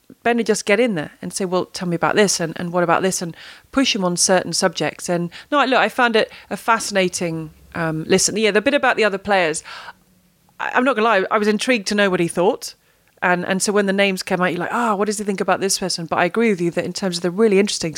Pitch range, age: 180-225 Hz, 30-49